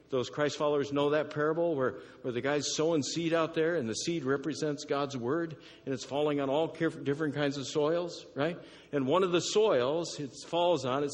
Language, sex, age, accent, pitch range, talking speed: English, male, 60-79, American, 130-160 Hz, 210 wpm